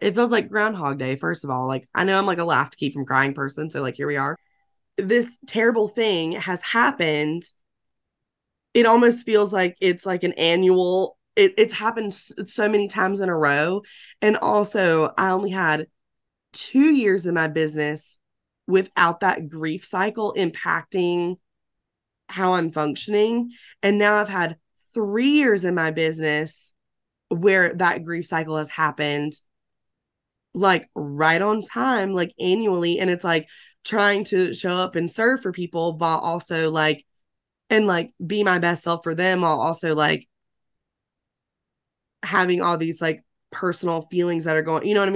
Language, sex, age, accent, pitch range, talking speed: English, female, 20-39, American, 160-205 Hz, 165 wpm